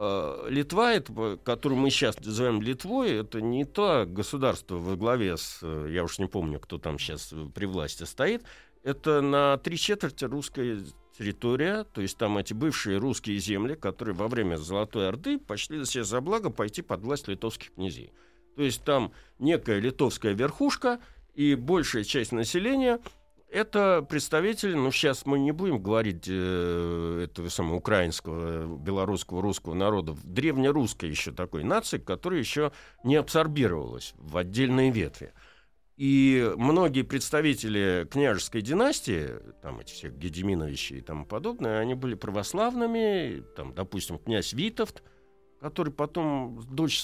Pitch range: 95-140 Hz